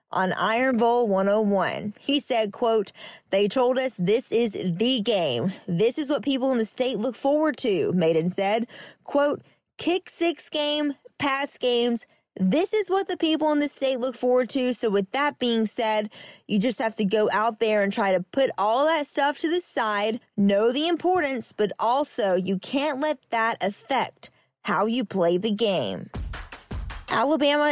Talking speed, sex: 175 wpm, female